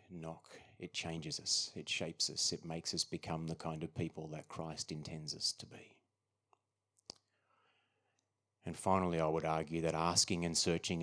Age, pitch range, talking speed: 30-49, 80-95 Hz, 165 wpm